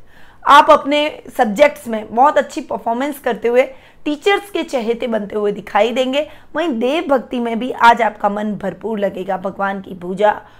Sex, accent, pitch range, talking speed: female, native, 215-275 Hz, 165 wpm